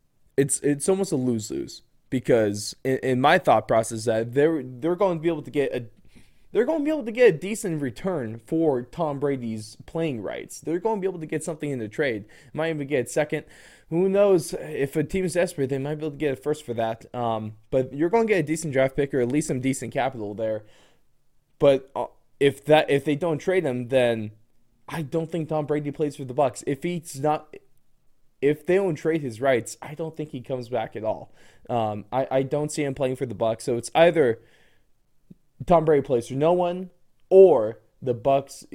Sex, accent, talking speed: male, American, 220 wpm